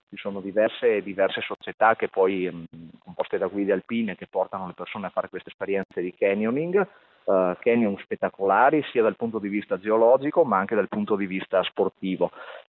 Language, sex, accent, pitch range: Italian, male, native, 100-135 Hz